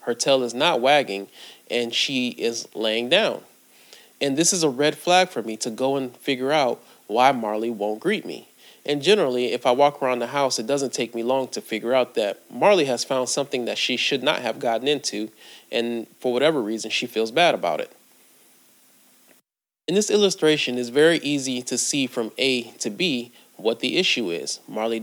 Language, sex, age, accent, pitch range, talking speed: English, male, 30-49, American, 115-145 Hz, 195 wpm